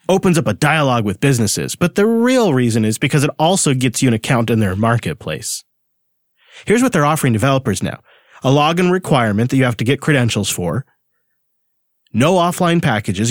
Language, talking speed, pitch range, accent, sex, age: English, 180 wpm, 125-170 Hz, American, male, 30-49